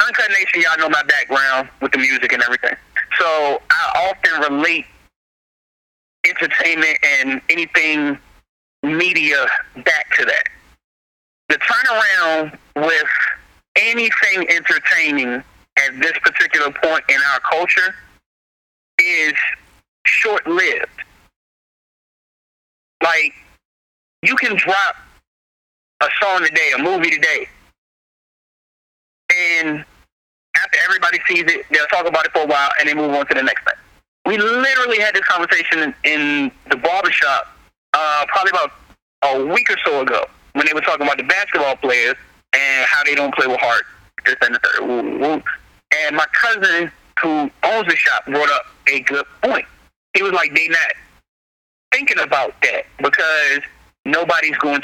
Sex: male